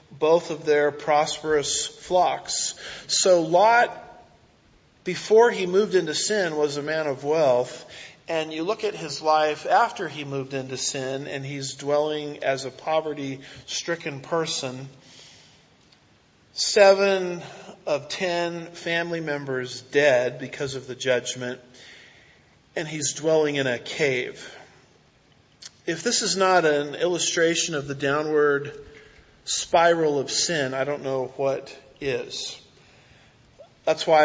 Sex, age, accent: male, 40-59, American